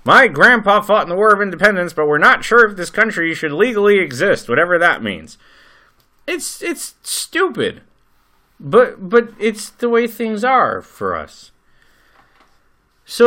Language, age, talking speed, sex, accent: English, 30-49, 155 wpm, male, American